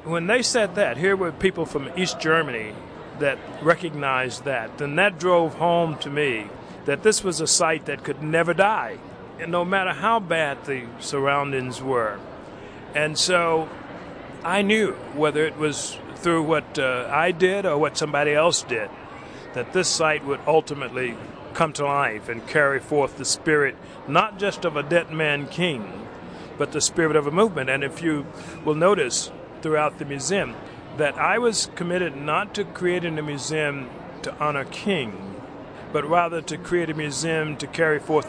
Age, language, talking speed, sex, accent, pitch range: 50-69, English, 170 wpm, male, American, 145-180 Hz